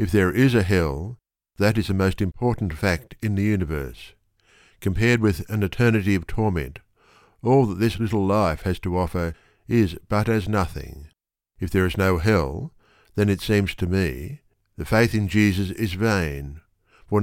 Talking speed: 170 wpm